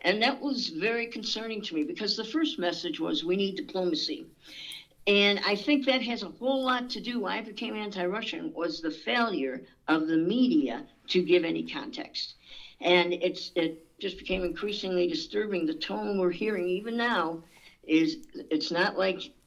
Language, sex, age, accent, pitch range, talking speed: English, female, 60-79, American, 175-255 Hz, 175 wpm